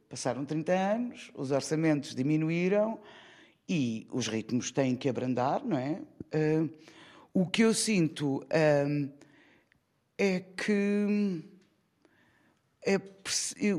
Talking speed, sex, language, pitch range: 90 wpm, female, Portuguese, 170-220 Hz